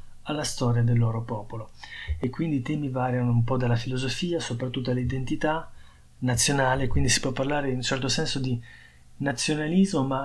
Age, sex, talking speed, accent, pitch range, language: 20-39, male, 165 wpm, native, 115-140 Hz, Italian